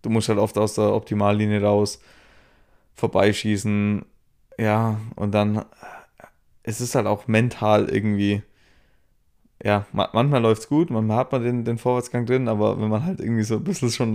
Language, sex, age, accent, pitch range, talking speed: German, male, 20-39, German, 100-110 Hz, 165 wpm